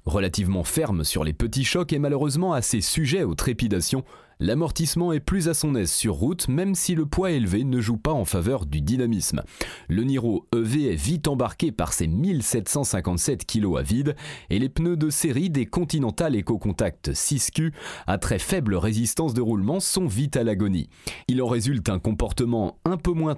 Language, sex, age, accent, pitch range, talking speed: French, male, 30-49, French, 105-155 Hz, 185 wpm